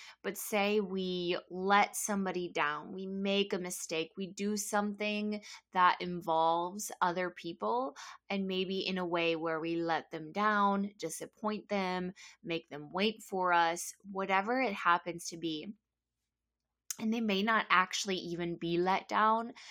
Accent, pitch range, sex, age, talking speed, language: American, 180-215 Hz, female, 20-39, 145 wpm, English